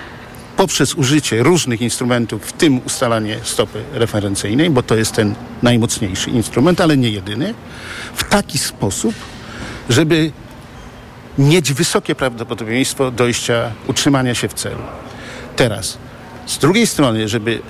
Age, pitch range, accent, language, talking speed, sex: 50-69, 115-150 Hz, native, Polish, 120 wpm, male